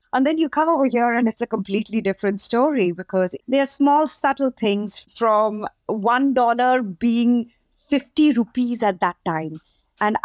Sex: female